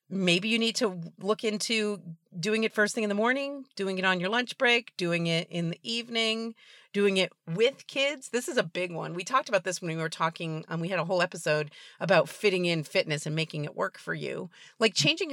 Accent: American